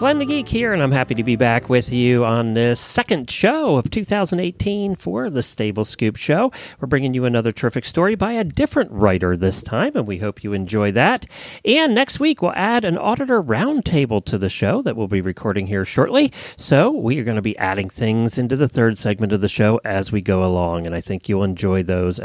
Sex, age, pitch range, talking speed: male, 40-59, 100-155 Hz, 225 wpm